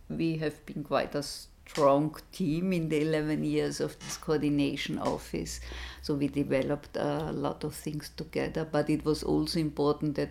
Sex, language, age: female, English, 50-69